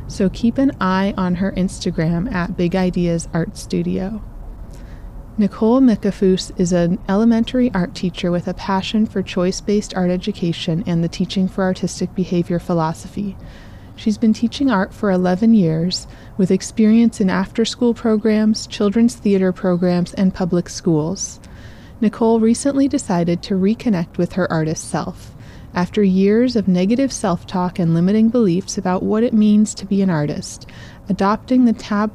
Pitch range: 175-215 Hz